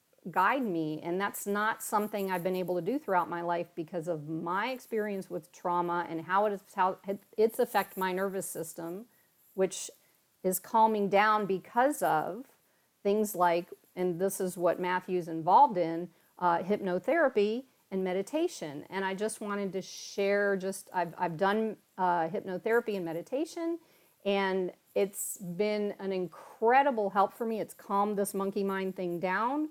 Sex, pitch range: female, 180-220 Hz